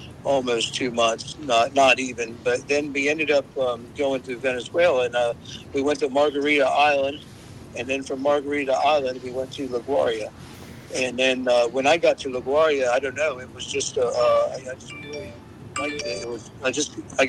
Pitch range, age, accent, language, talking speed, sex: 120-140 Hz, 60-79, American, English, 200 wpm, male